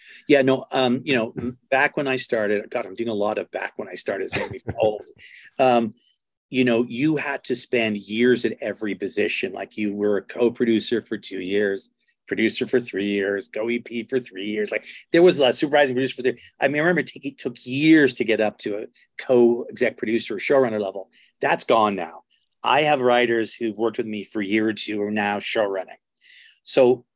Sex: male